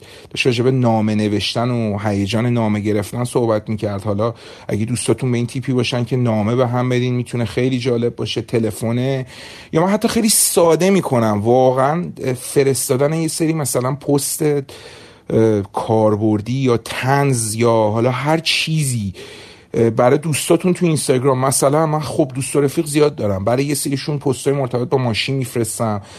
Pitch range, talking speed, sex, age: 115-145 Hz, 150 wpm, male, 40-59